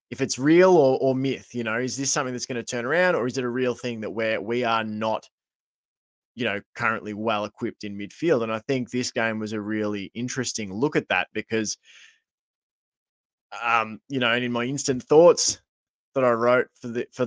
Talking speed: 210 wpm